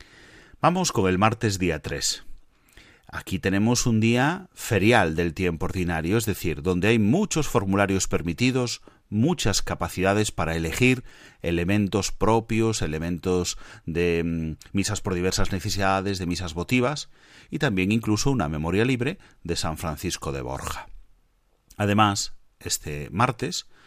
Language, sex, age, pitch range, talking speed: Spanish, male, 40-59, 85-110 Hz, 125 wpm